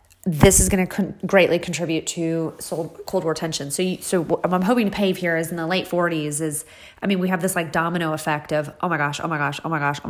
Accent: American